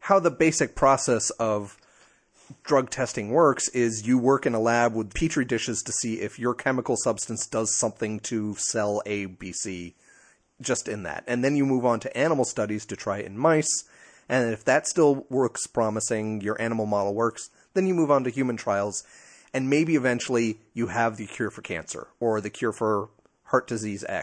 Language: English